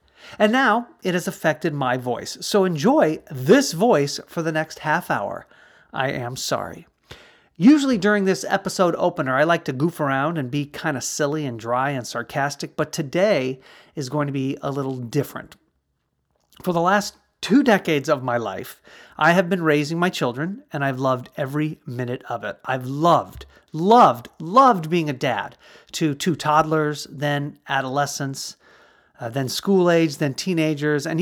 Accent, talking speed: American, 165 wpm